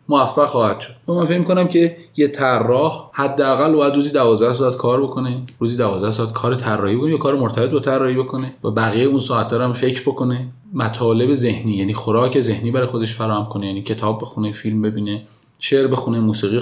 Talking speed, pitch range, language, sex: 185 wpm, 110-145 Hz, Persian, male